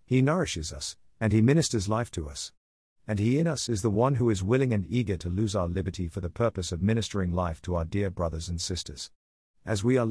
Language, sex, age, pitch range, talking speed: English, male, 50-69, 95-125 Hz, 235 wpm